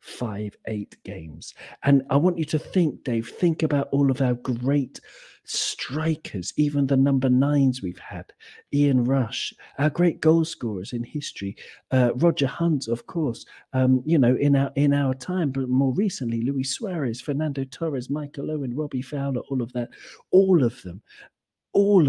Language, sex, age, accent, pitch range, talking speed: English, male, 40-59, British, 125-170 Hz, 170 wpm